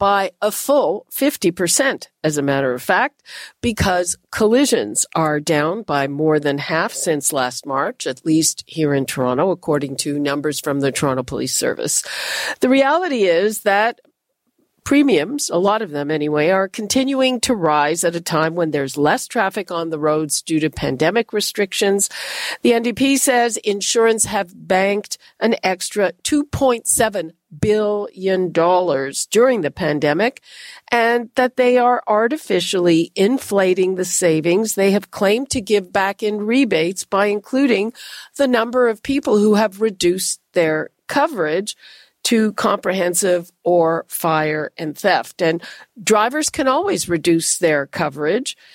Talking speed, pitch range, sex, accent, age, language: 140 wpm, 165-225 Hz, female, American, 50-69, English